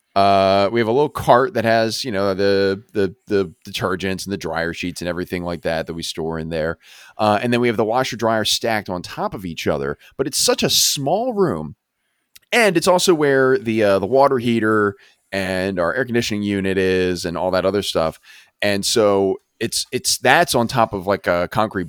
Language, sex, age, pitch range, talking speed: English, male, 30-49, 100-135 Hz, 215 wpm